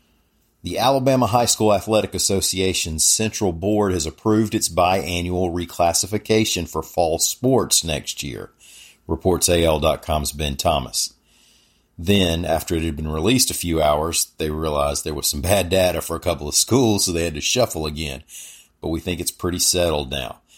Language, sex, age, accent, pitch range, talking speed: English, male, 40-59, American, 80-95 Hz, 165 wpm